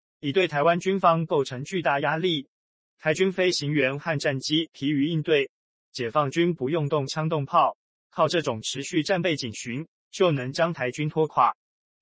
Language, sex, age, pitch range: Chinese, male, 20-39, 140-170 Hz